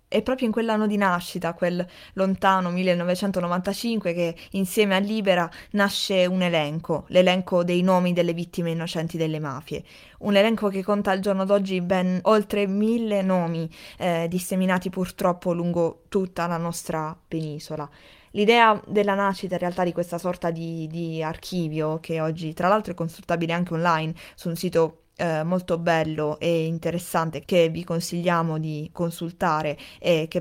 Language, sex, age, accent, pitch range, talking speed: Italian, female, 20-39, native, 165-190 Hz, 150 wpm